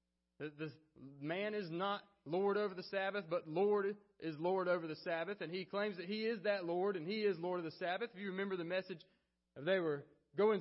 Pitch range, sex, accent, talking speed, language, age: 180-225 Hz, male, American, 215 wpm, English, 30-49